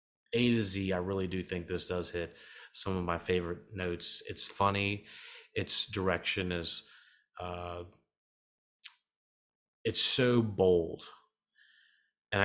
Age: 30-49